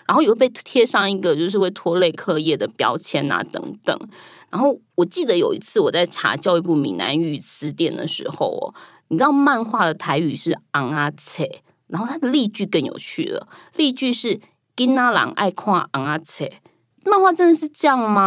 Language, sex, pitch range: Chinese, female, 165-260 Hz